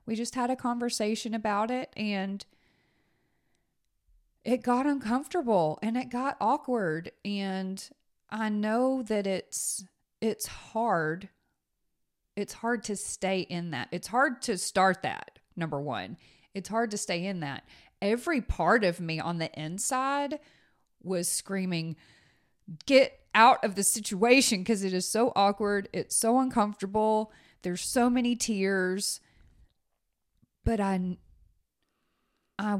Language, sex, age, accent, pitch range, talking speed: English, female, 30-49, American, 175-225 Hz, 130 wpm